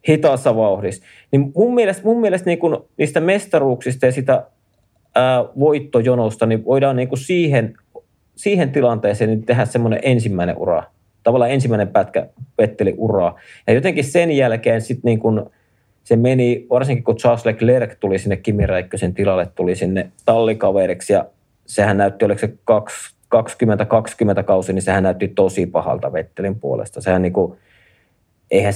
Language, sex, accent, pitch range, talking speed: Finnish, male, native, 100-125 Hz, 140 wpm